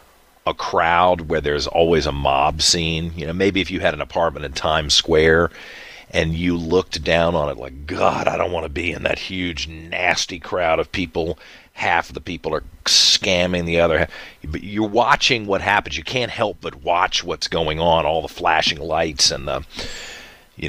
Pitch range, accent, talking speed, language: 75-90 Hz, American, 195 wpm, English